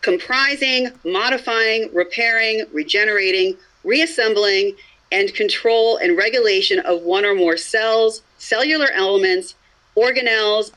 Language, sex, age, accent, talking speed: English, female, 40-59, American, 95 wpm